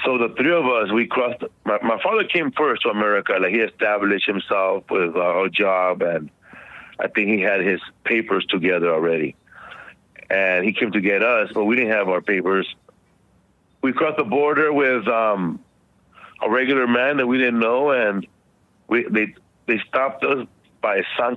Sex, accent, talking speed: male, American, 175 wpm